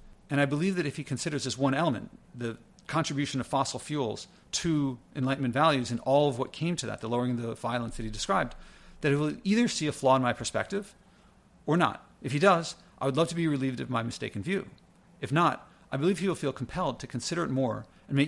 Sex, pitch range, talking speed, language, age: male, 130-165 Hz, 235 wpm, English, 40-59